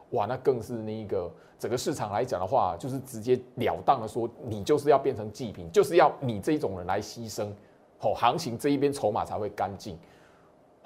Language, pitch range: Chinese, 125-200 Hz